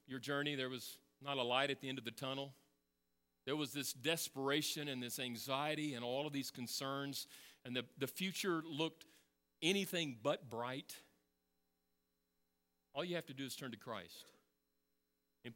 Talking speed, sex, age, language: 165 wpm, male, 40-59, English